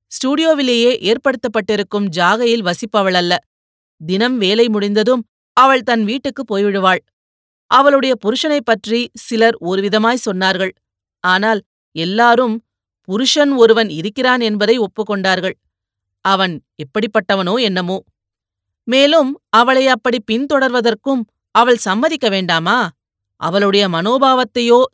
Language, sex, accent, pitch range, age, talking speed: Tamil, female, native, 195-250 Hz, 30-49, 90 wpm